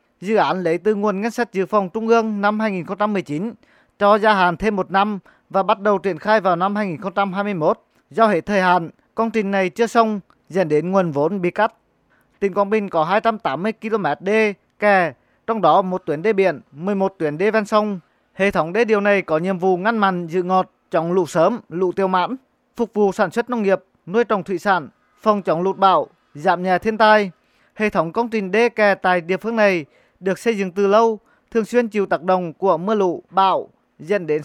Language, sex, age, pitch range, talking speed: Vietnamese, male, 20-39, 180-215 Hz, 215 wpm